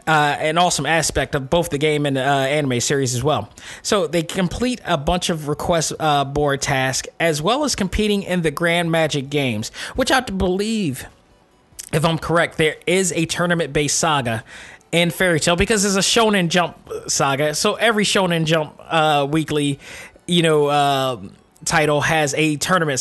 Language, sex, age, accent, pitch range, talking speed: English, male, 20-39, American, 145-180 Hz, 180 wpm